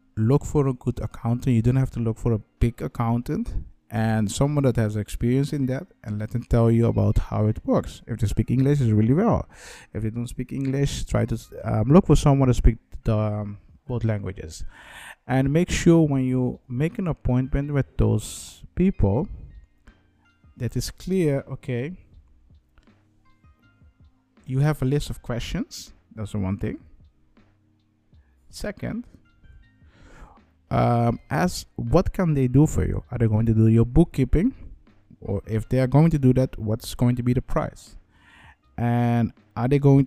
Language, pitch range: English, 105-130 Hz